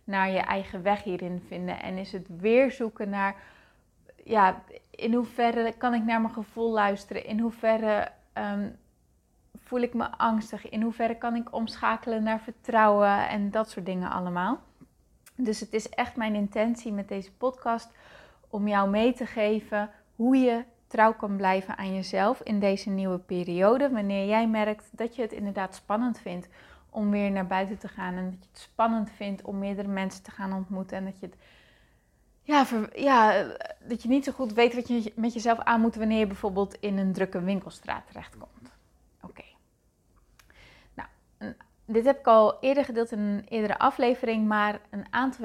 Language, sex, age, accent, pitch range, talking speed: Dutch, female, 20-39, Dutch, 200-235 Hz, 175 wpm